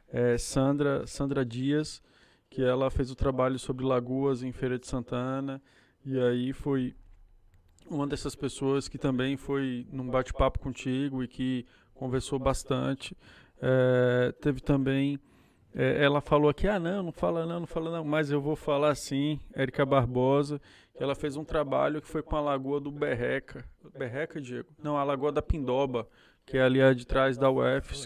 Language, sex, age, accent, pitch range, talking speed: Portuguese, male, 20-39, Brazilian, 130-145 Hz, 170 wpm